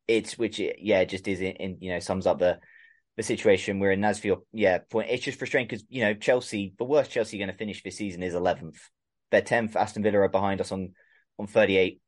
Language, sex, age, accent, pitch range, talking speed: English, male, 20-39, British, 95-110 Hz, 235 wpm